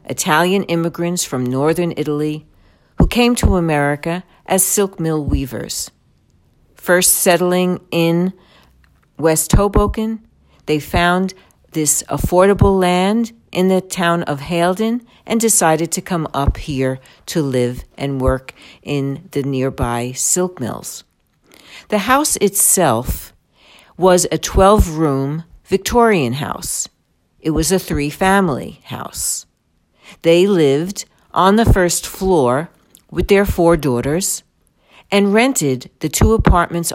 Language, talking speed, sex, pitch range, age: English, 115 wpm, female, 140-190 Hz, 60-79